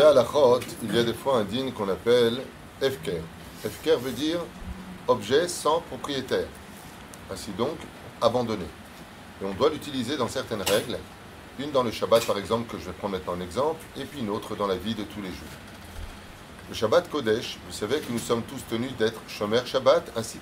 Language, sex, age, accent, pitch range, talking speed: French, male, 30-49, French, 100-125 Hz, 195 wpm